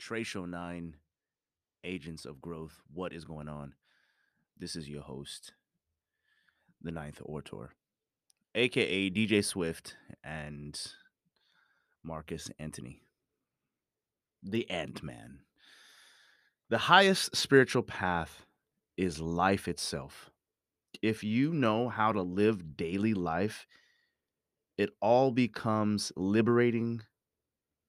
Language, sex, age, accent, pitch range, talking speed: English, male, 30-49, American, 80-110 Hz, 95 wpm